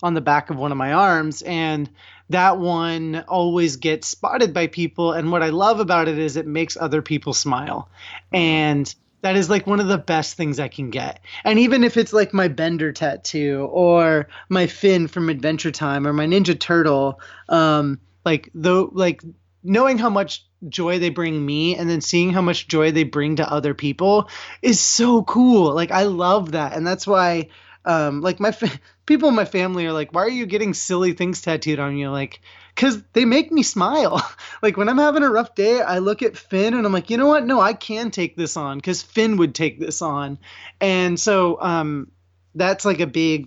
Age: 20-39